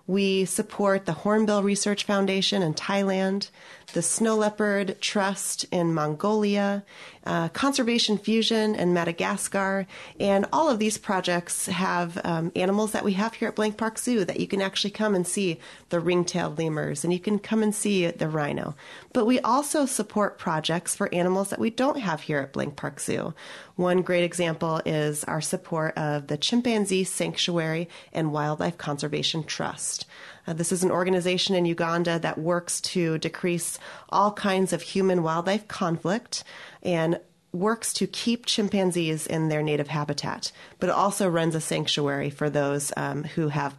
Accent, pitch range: American, 160-205 Hz